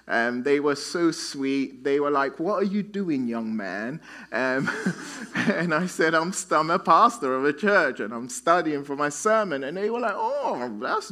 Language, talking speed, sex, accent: English, 200 wpm, male, British